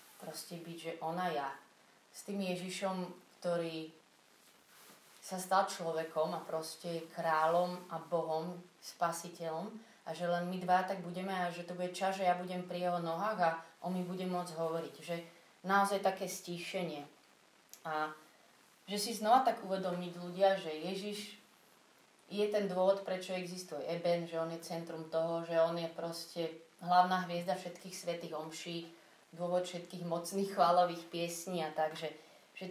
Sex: female